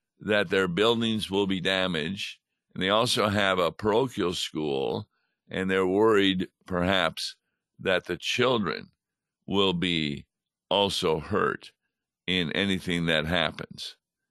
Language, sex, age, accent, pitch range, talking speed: English, male, 50-69, American, 95-115 Hz, 115 wpm